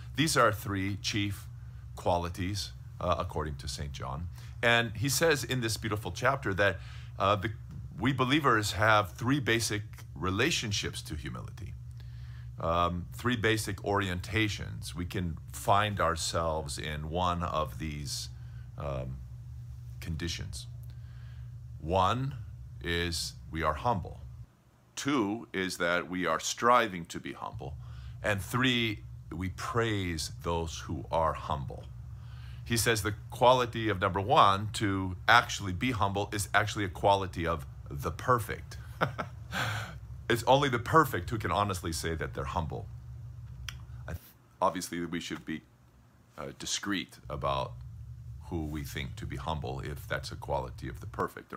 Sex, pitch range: male, 85-115 Hz